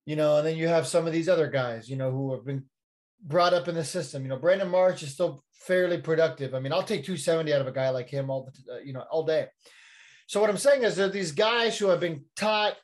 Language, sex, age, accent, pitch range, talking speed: English, male, 30-49, American, 160-205 Hz, 265 wpm